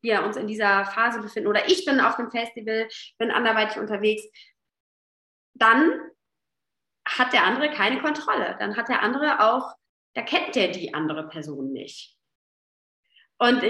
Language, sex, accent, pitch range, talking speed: German, female, German, 220-300 Hz, 150 wpm